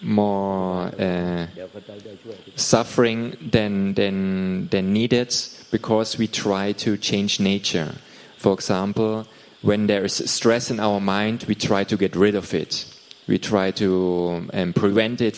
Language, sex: Thai, male